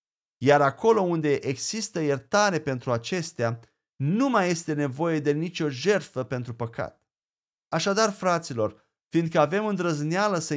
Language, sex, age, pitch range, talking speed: Romanian, male, 30-49, 130-175 Hz, 125 wpm